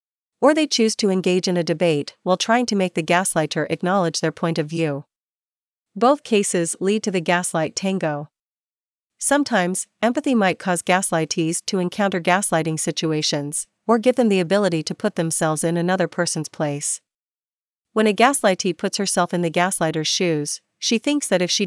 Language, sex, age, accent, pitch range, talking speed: English, female, 40-59, American, 165-205 Hz, 170 wpm